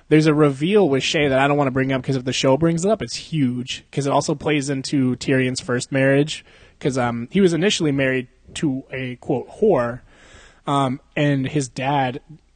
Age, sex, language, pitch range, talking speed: 20-39, male, English, 125-145 Hz, 205 wpm